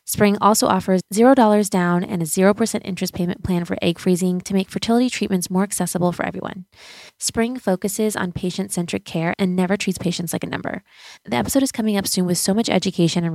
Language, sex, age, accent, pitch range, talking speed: English, female, 20-39, American, 175-210 Hz, 200 wpm